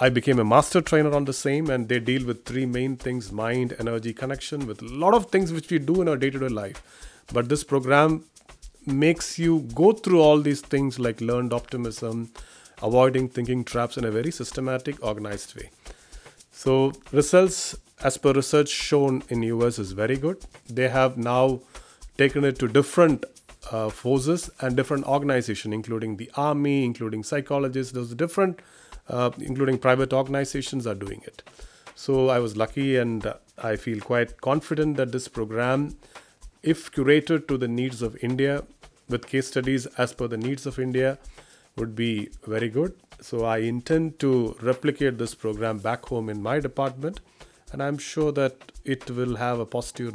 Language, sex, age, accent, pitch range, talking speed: English, male, 30-49, Indian, 115-140 Hz, 170 wpm